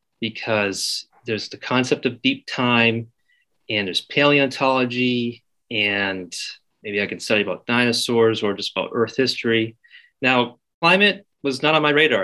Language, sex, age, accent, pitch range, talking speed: English, male, 30-49, American, 105-135 Hz, 140 wpm